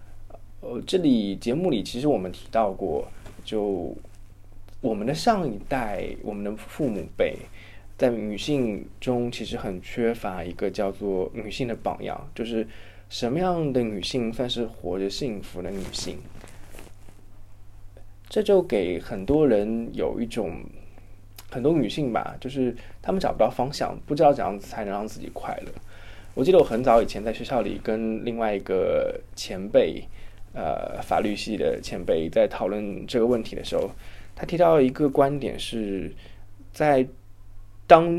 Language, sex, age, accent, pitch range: Chinese, male, 20-39, native, 100-130 Hz